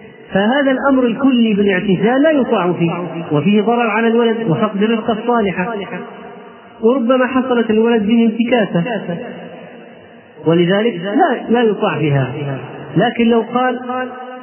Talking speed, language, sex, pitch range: 110 wpm, Arabic, male, 180-225 Hz